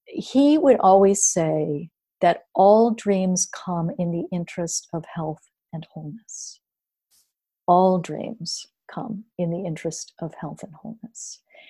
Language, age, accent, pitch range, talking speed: English, 40-59, American, 175-215 Hz, 130 wpm